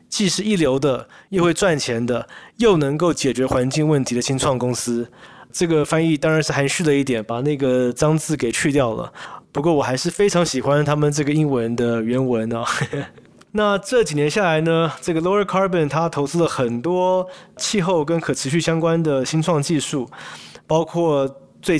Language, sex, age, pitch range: Chinese, male, 20-39, 130-175 Hz